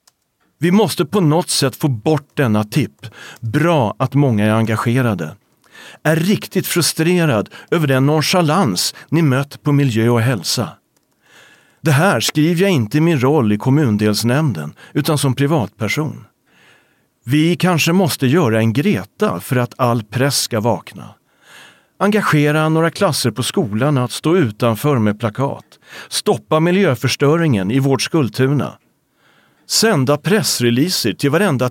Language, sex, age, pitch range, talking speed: English, male, 40-59, 115-160 Hz, 130 wpm